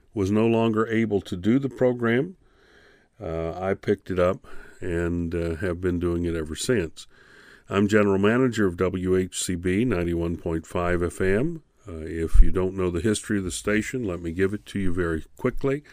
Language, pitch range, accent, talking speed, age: English, 90-105 Hz, American, 175 wpm, 50-69